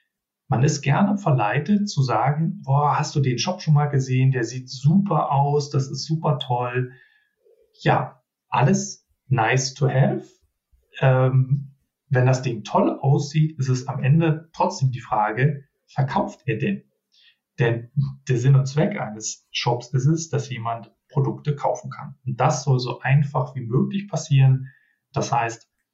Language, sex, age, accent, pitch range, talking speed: German, male, 40-59, German, 125-150 Hz, 155 wpm